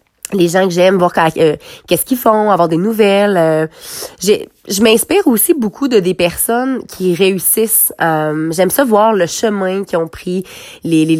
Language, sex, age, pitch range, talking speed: French, female, 20-39, 175-230 Hz, 170 wpm